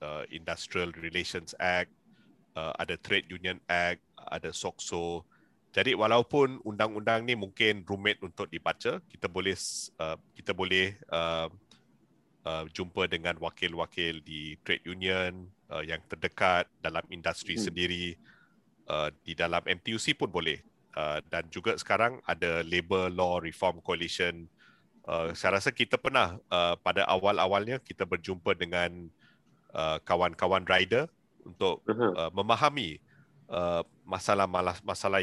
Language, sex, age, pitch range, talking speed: Malay, male, 30-49, 85-100 Hz, 105 wpm